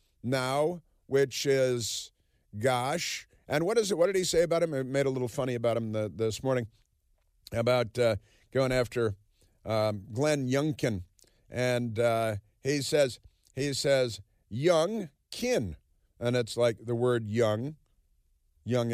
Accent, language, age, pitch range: American, English, 50-69, 115-145 Hz